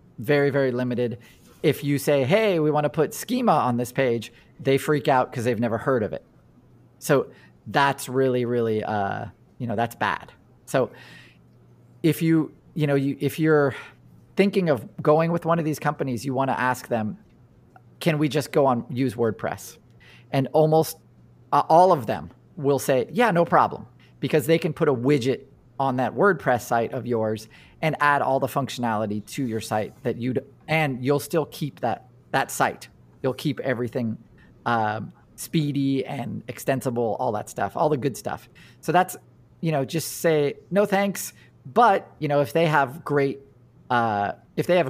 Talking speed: 180 wpm